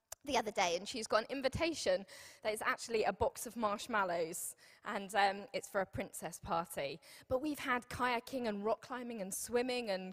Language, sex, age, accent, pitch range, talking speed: English, female, 10-29, British, 195-245 Hz, 190 wpm